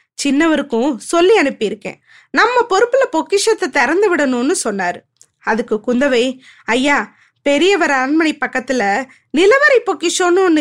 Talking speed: 100 wpm